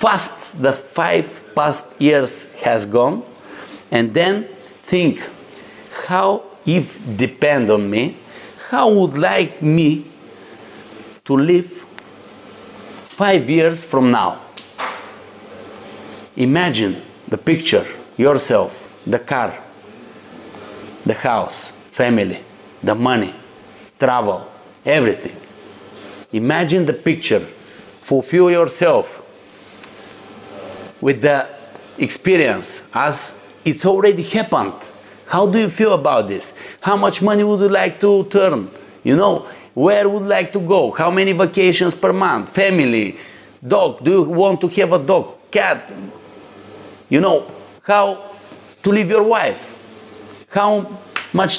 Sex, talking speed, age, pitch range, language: male, 110 wpm, 50-69, 140-200 Hz, Greek